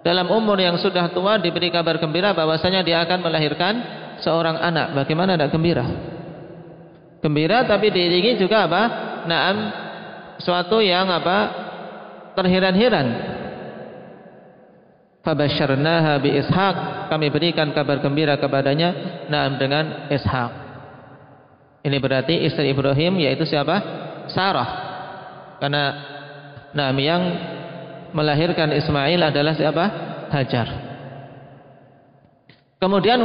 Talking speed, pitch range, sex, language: 90 wpm, 150-190 Hz, male, Indonesian